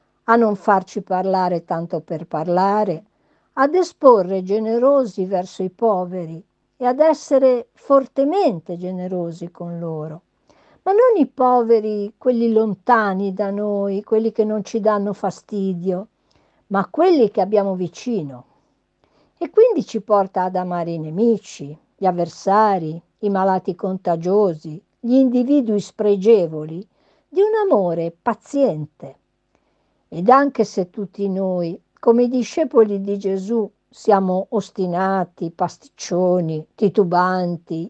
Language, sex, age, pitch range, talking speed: Italian, female, 50-69, 175-230 Hz, 115 wpm